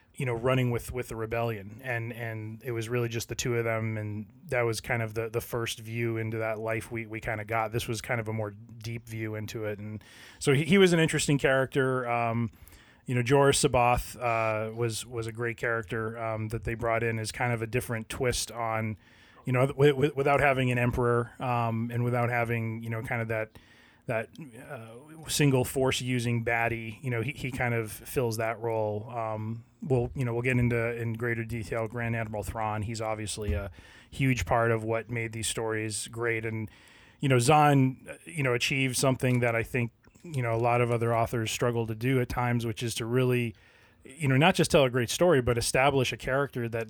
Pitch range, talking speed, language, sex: 115-125 Hz, 220 wpm, English, male